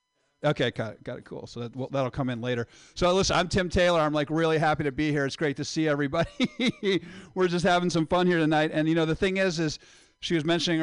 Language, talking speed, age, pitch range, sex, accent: English, 260 wpm, 50-69, 150-195 Hz, male, American